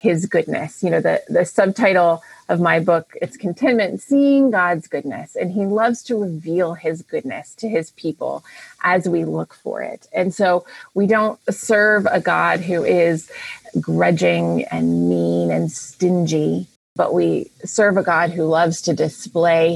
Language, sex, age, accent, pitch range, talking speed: English, female, 30-49, American, 165-210 Hz, 160 wpm